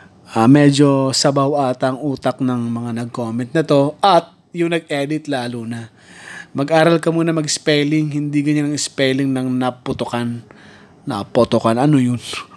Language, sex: Filipino, male